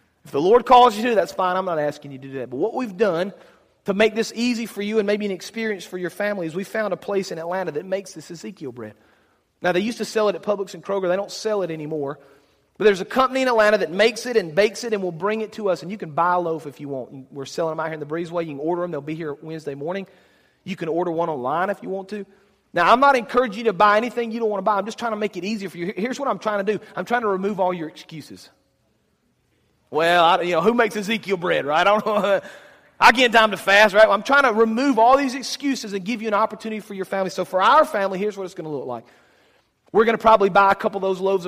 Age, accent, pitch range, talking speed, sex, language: 40-59, American, 160-215 Hz, 290 wpm, male, English